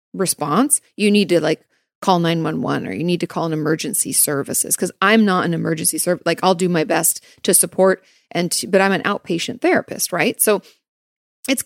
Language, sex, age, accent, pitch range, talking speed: English, female, 30-49, American, 175-220 Hz, 195 wpm